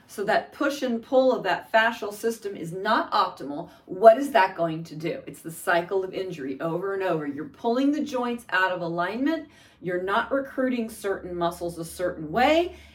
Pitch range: 180-270 Hz